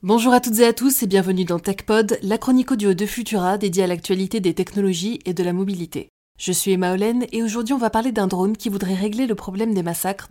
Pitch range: 180-215 Hz